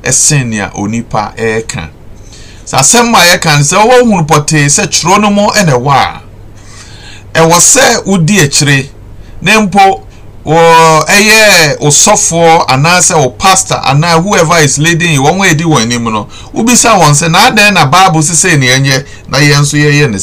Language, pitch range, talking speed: English, 115-180 Hz, 160 wpm